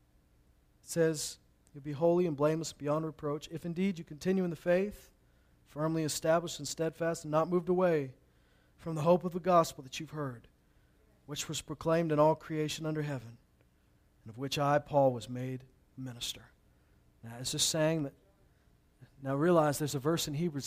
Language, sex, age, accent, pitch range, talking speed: English, male, 40-59, American, 145-200 Hz, 175 wpm